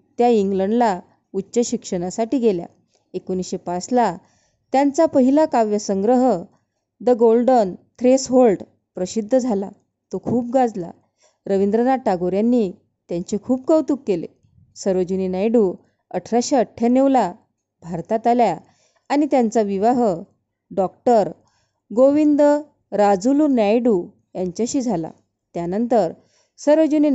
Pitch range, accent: 195-255 Hz, native